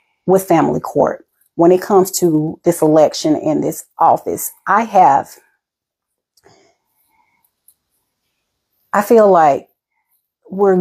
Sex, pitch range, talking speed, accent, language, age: female, 155-185 Hz, 100 wpm, American, English, 30-49